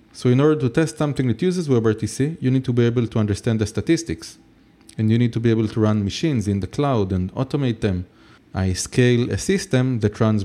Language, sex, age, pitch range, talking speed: English, male, 30-49, 105-130 Hz, 225 wpm